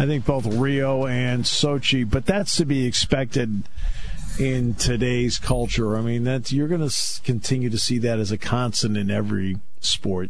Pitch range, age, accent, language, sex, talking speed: 100-125 Hz, 50-69, American, English, male, 175 wpm